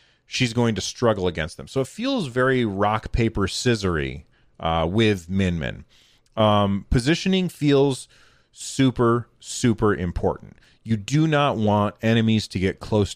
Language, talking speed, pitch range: English, 140 wpm, 100-125 Hz